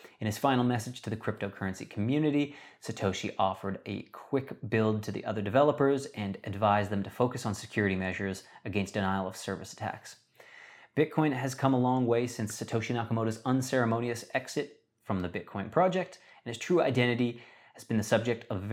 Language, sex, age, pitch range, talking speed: English, male, 30-49, 100-130 Hz, 170 wpm